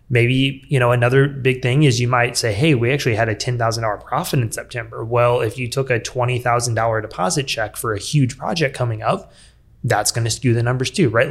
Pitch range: 115-135 Hz